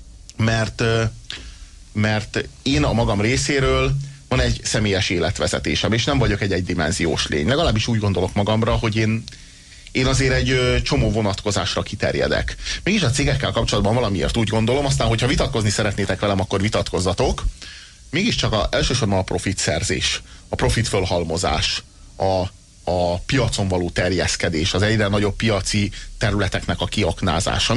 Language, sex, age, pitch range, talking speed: Hungarian, male, 30-49, 100-125 Hz, 135 wpm